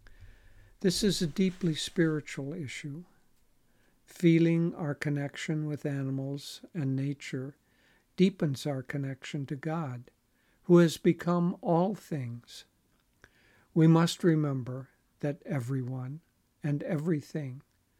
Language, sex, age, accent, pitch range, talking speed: English, male, 60-79, American, 135-165 Hz, 100 wpm